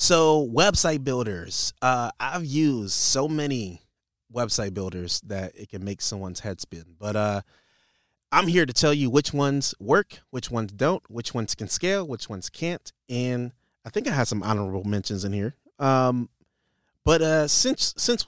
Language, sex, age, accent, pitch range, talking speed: English, male, 30-49, American, 100-130 Hz, 170 wpm